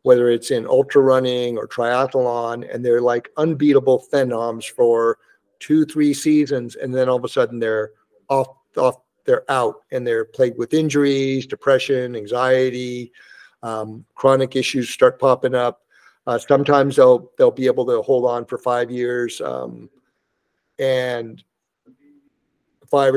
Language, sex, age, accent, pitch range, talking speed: English, male, 50-69, American, 120-160 Hz, 140 wpm